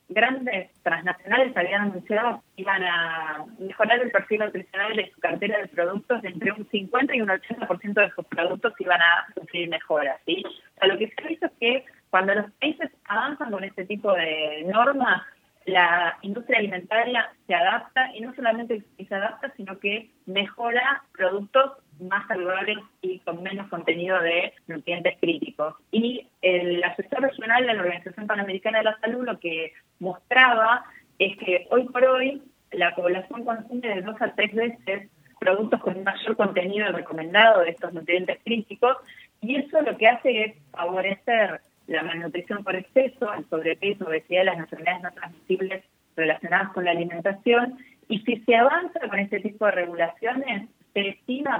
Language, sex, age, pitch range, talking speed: Spanish, female, 30-49, 180-235 Hz, 165 wpm